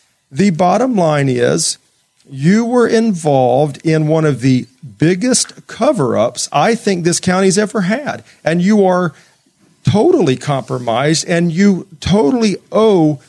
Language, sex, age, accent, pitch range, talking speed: English, male, 40-59, American, 145-200 Hz, 125 wpm